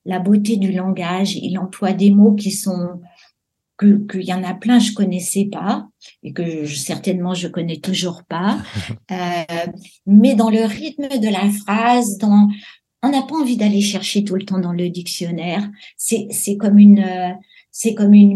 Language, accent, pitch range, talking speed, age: French, French, 175-210 Hz, 180 wpm, 60-79